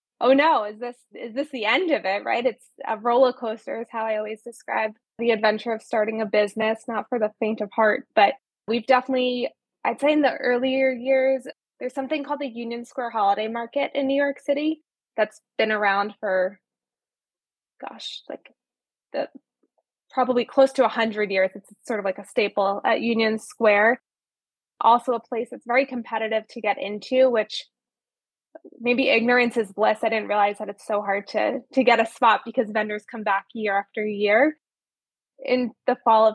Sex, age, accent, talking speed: female, 20-39, American, 185 wpm